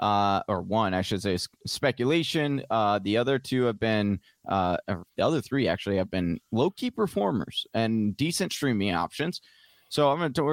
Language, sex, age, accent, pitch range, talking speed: English, male, 20-39, American, 100-130 Hz, 170 wpm